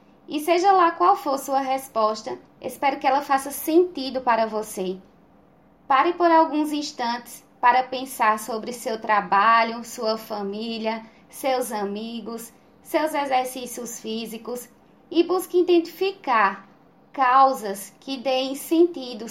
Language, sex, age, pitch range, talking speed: Portuguese, female, 20-39, 225-295 Hz, 115 wpm